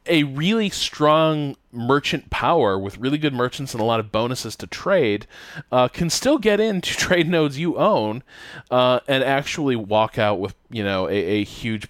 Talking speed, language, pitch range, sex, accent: 180 wpm, English, 105-140 Hz, male, American